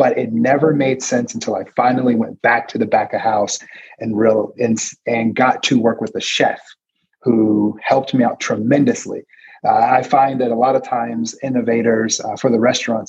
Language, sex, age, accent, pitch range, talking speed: English, male, 30-49, American, 110-135 Hz, 195 wpm